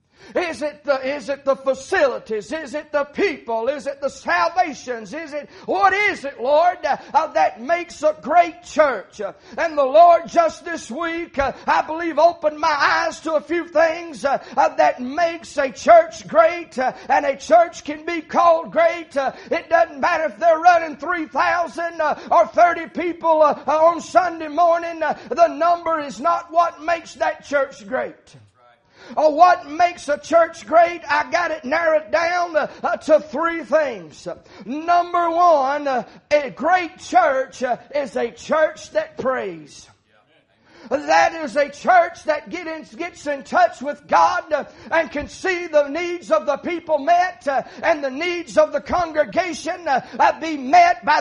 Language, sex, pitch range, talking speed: English, male, 290-340 Hz, 165 wpm